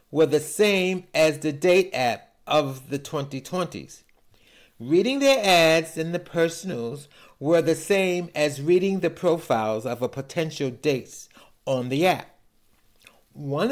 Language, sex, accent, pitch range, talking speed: English, male, American, 125-175 Hz, 135 wpm